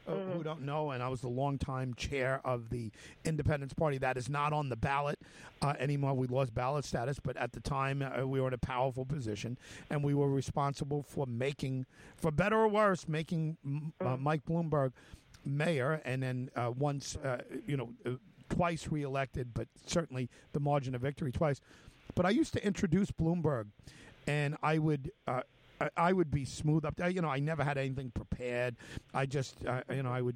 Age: 50-69